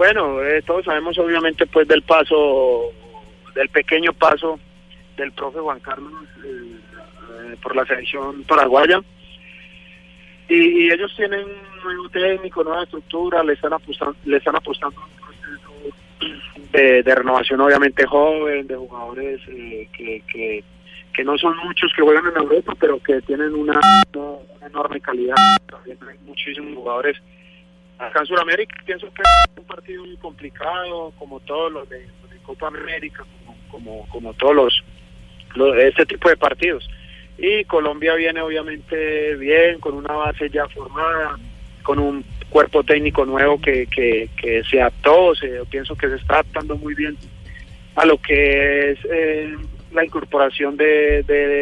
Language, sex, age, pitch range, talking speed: Spanish, male, 30-49, 135-170 Hz, 150 wpm